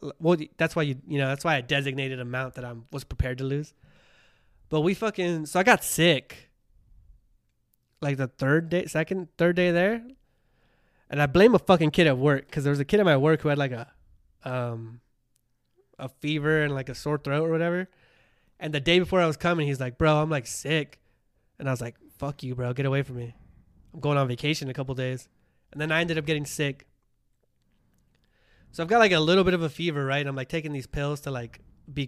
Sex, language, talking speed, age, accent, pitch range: male, English, 225 wpm, 20-39, American, 130-165 Hz